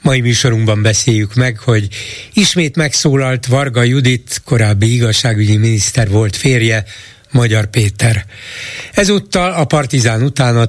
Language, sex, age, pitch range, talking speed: Hungarian, male, 60-79, 115-150 Hz, 120 wpm